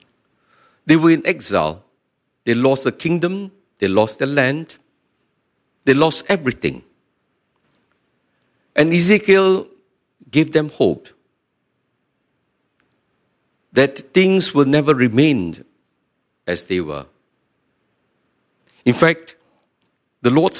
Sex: male